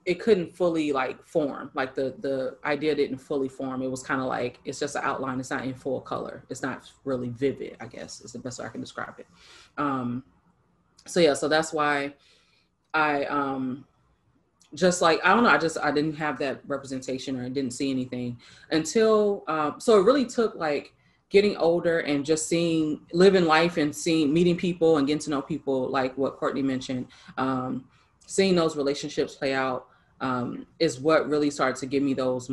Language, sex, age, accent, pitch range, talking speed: English, female, 20-39, American, 135-170 Hz, 195 wpm